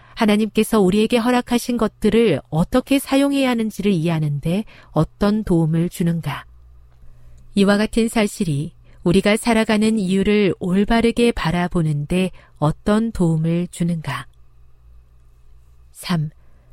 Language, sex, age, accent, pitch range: Korean, female, 40-59, native, 150-225 Hz